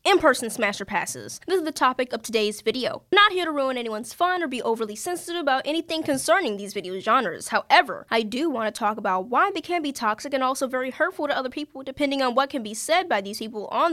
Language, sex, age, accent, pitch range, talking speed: English, female, 10-29, American, 215-305 Hz, 240 wpm